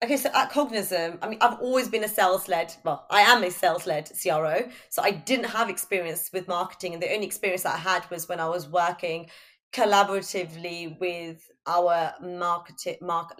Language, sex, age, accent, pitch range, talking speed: English, female, 20-39, British, 170-210 Hz, 195 wpm